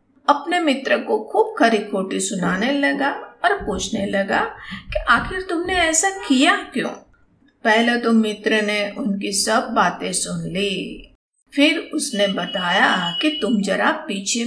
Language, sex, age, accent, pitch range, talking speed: Hindi, female, 50-69, native, 205-290 Hz, 135 wpm